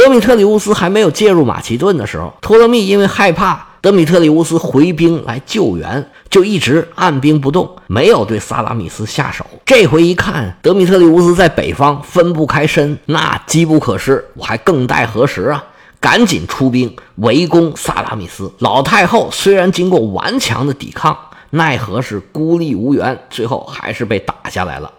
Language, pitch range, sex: Chinese, 115-175 Hz, male